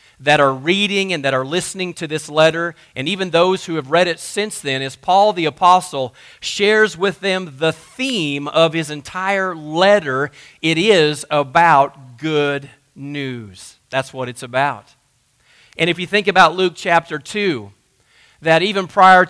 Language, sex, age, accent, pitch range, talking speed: English, male, 40-59, American, 140-185 Hz, 160 wpm